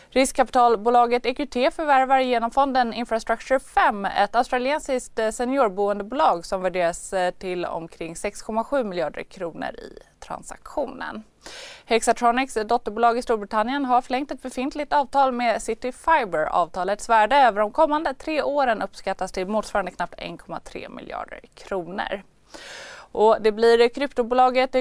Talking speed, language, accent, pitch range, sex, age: 115 wpm, Swedish, native, 215-280 Hz, female, 20-39